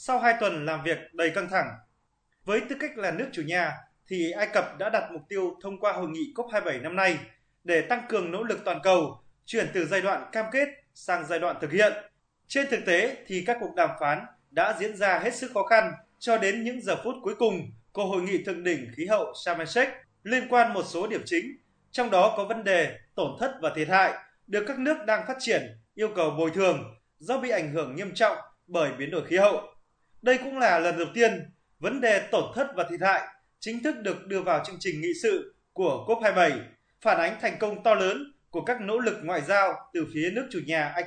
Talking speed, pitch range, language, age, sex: 230 wpm, 170-230 Hz, Vietnamese, 20-39, male